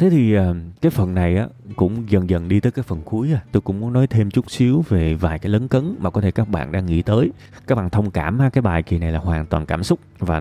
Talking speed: 270 wpm